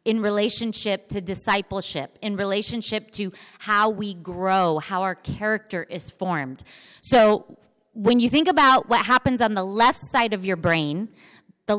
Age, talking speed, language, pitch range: 30-49, 155 wpm, English, 195-245 Hz